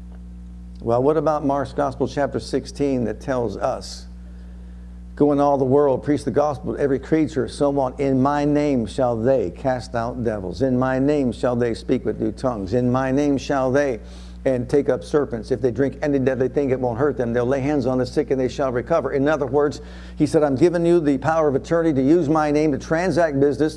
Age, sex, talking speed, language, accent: 60-79, male, 220 wpm, English, American